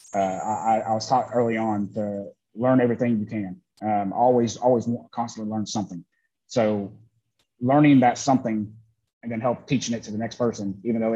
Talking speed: 175 wpm